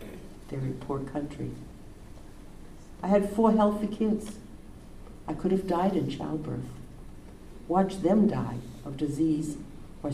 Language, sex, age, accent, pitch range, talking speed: English, female, 60-79, American, 125-185 Hz, 120 wpm